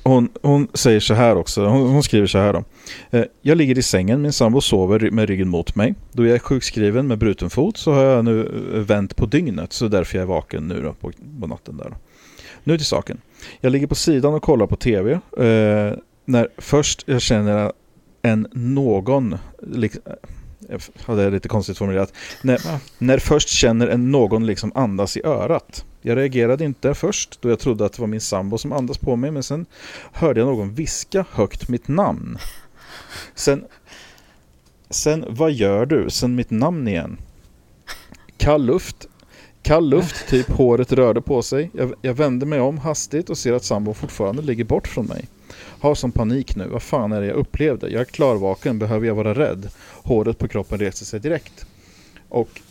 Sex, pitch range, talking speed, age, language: male, 105-135 Hz, 190 wpm, 40-59, English